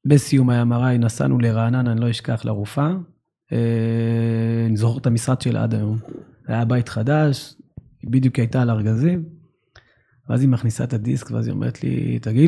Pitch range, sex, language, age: 115-130 Hz, male, Hebrew, 30-49